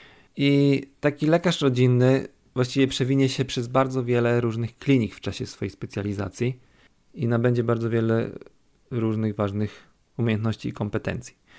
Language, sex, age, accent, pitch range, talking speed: Polish, male, 40-59, native, 110-135 Hz, 130 wpm